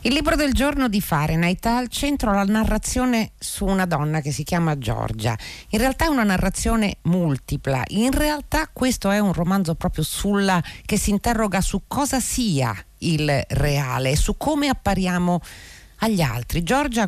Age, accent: 50-69, native